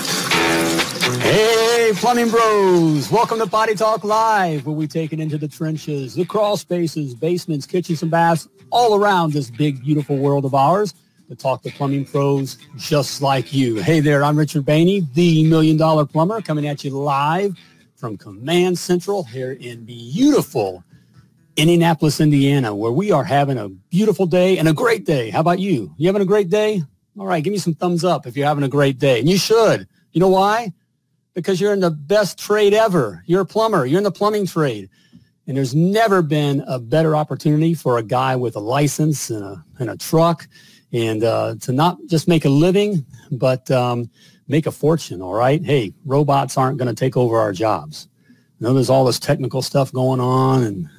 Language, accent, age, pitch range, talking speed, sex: English, American, 50-69, 135-180 Hz, 190 wpm, male